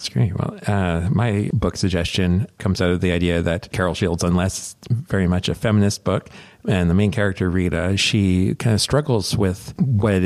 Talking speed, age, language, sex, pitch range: 180 wpm, 40-59, English, male, 90-105 Hz